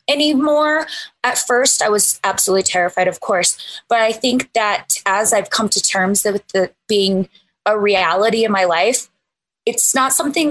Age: 20-39